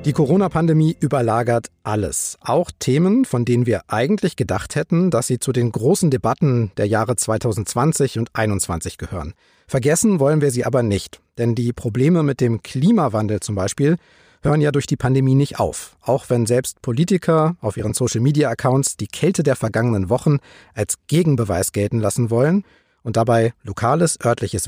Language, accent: German, German